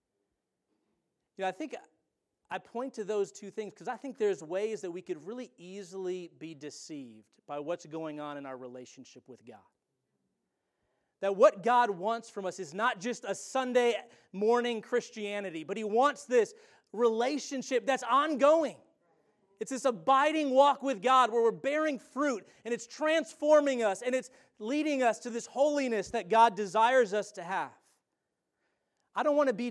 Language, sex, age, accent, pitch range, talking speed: English, male, 30-49, American, 185-250 Hz, 170 wpm